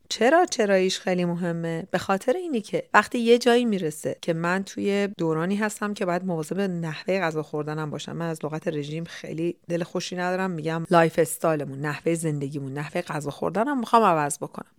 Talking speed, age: 175 wpm, 40-59